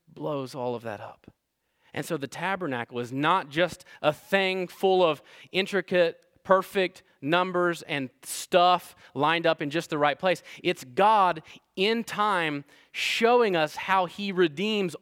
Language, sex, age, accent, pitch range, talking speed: English, male, 20-39, American, 135-180 Hz, 150 wpm